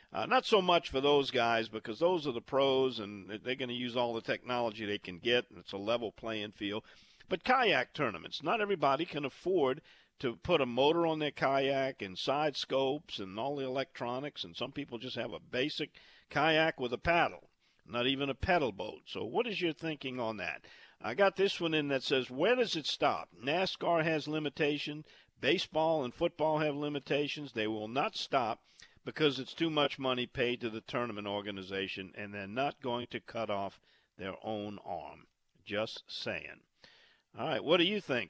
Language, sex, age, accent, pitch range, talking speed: English, male, 50-69, American, 115-160 Hz, 195 wpm